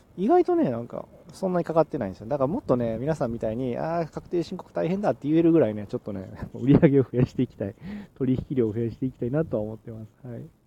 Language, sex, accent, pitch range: Japanese, male, native, 110-150 Hz